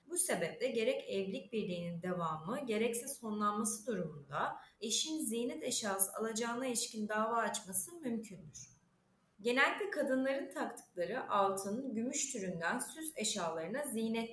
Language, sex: Turkish, female